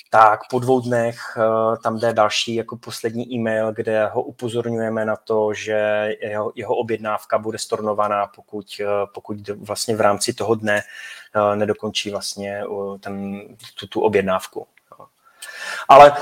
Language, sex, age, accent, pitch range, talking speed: Czech, male, 20-39, native, 110-125 Hz, 120 wpm